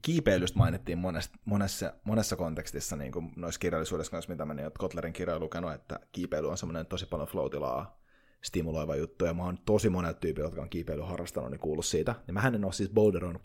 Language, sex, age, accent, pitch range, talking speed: Finnish, male, 30-49, native, 85-115 Hz, 190 wpm